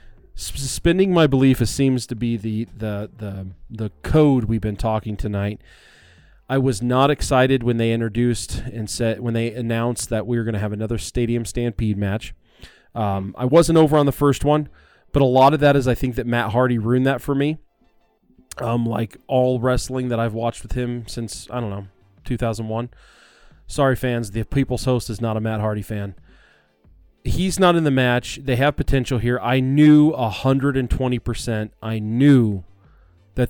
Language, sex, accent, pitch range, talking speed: English, male, American, 110-135 Hz, 185 wpm